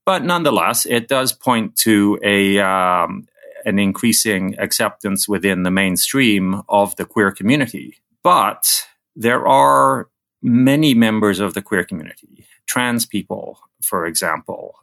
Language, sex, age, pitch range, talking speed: English, male, 40-59, 95-115 Hz, 125 wpm